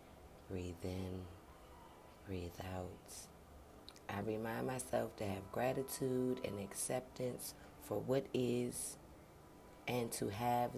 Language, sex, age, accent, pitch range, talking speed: English, female, 30-49, American, 90-125 Hz, 100 wpm